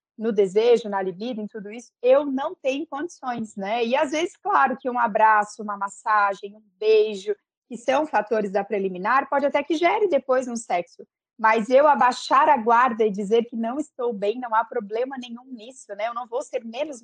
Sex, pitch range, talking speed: female, 220-275 Hz, 200 wpm